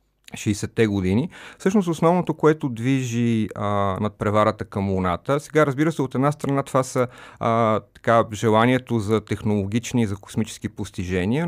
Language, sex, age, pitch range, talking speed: Bulgarian, male, 40-59, 100-125 Hz, 145 wpm